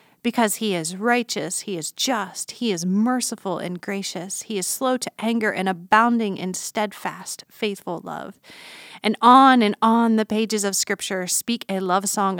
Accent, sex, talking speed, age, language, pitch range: American, female, 170 wpm, 30-49, English, 185-225 Hz